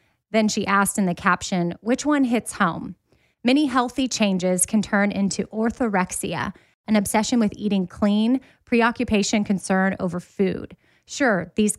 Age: 20-39